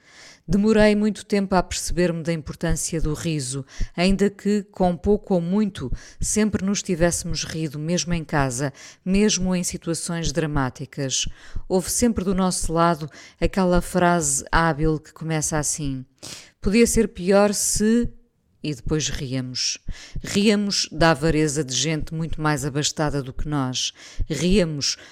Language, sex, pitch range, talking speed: Portuguese, female, 145-180 Hz, 135 wpm